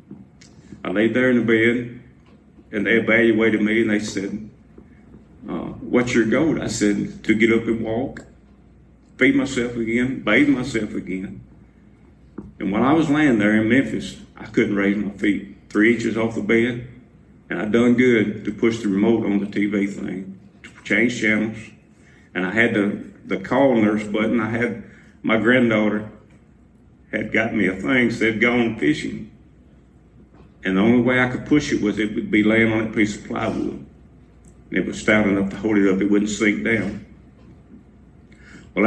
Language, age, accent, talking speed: English, 50-69, American, 180 wpm